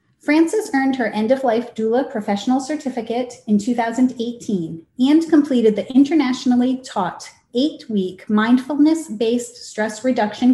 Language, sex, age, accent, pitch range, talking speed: English, female, 30-49, American, 210-275 Hz, 125 wpm